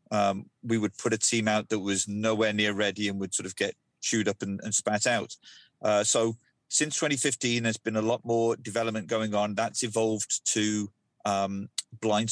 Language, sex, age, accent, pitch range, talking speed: English, male, 30-49, British, 105-115 Hz, 195 wpm